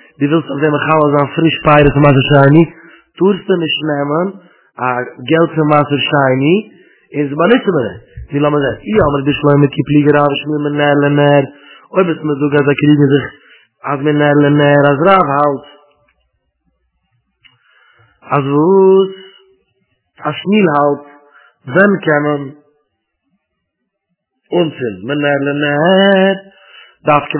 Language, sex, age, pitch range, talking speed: English, male, 30-49, 145-170 Hz, 85 wpm